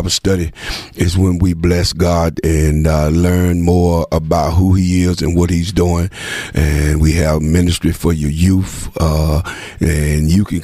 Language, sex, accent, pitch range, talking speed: English, male, American, 80-90 Hz, 165 wpm